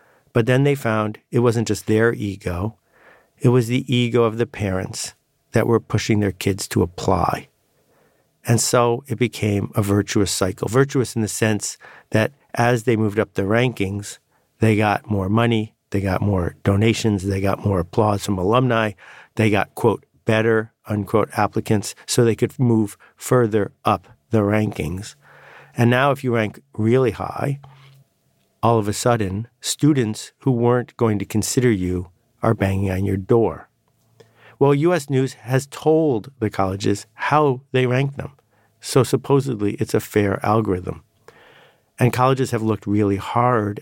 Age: 50-69